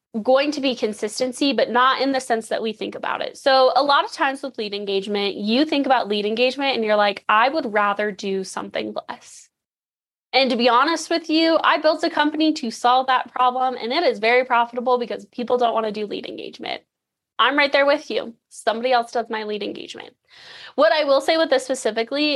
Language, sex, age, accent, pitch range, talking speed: English, female, 10-29, American, 215-265 Hz, 215 wpm